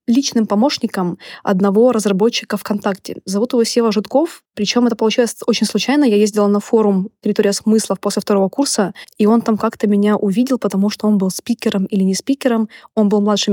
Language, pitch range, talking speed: Russian, 200-235 Hz, 175 wpm